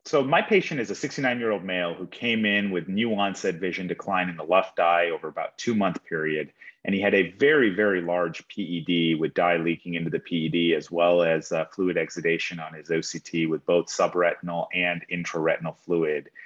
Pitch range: 85-100 Hz